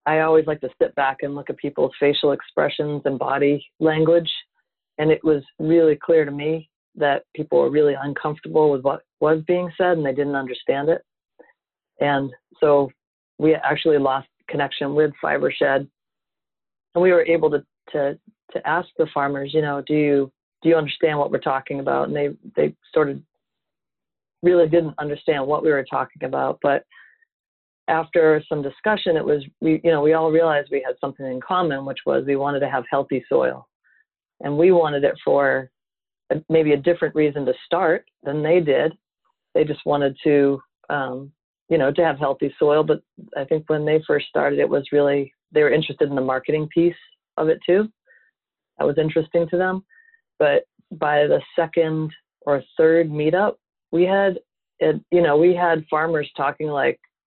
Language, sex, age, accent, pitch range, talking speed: English, female, 40-59, American, 145-165 Hz, 180 wpm